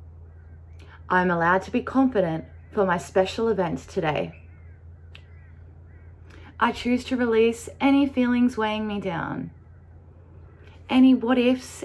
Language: English